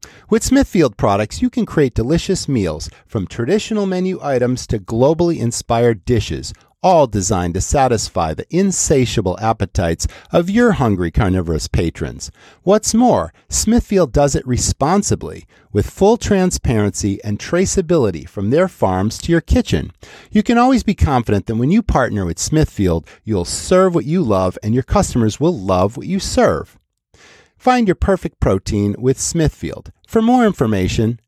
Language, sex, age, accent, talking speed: English, male, 40-59, American, 150 wpm